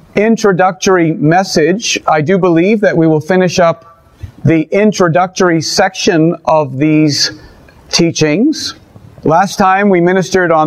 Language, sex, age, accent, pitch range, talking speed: English, male, 40-59, American, 155-195 Hz, 120 wpm